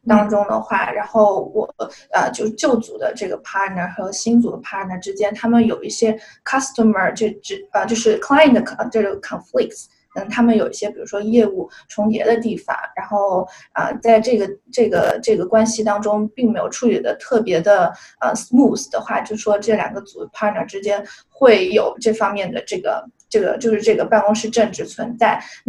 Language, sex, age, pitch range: Chinese, female, 20-39, 205-230 Hz